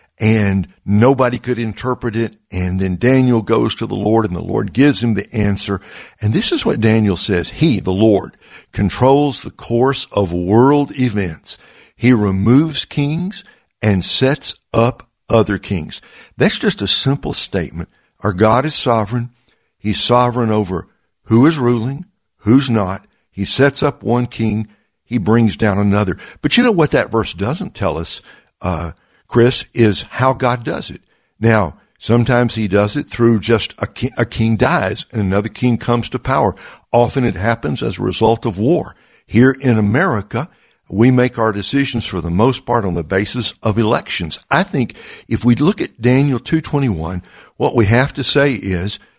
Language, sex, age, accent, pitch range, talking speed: English, male, 60-79, American, 100-125 Hz, 170 wpm